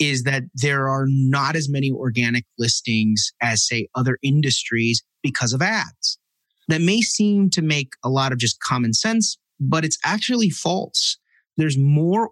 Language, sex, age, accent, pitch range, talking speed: English, male, 30-49, American, 120-155 Hz, 160 wpm